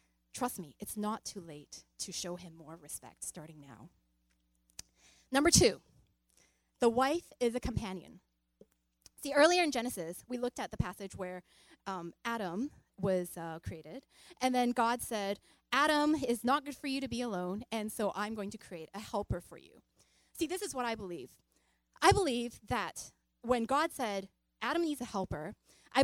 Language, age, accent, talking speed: English, 20-39, American, 175 wpm